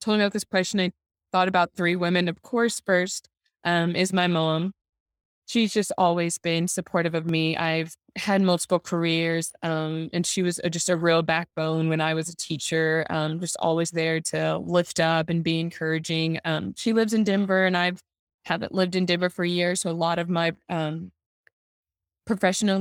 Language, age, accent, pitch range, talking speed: English, 20-39, American, 160-190 Hz, 190 wpm